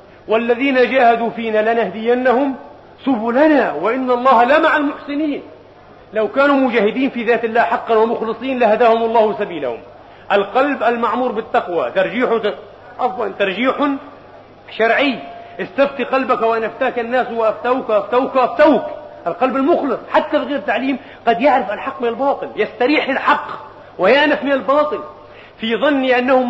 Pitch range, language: 210-255 Hz, Arabic